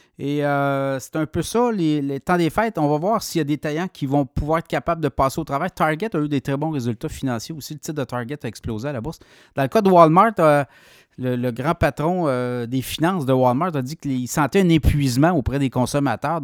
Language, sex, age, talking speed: French, male, 30-49, 255 wpm